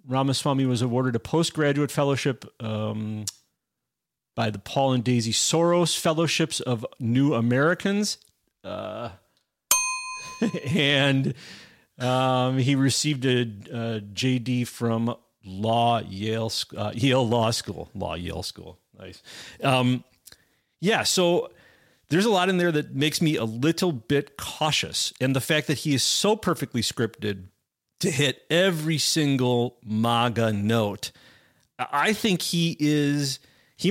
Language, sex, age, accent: English, male, 40-59, American